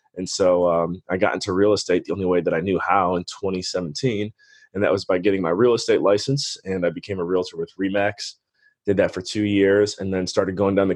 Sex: male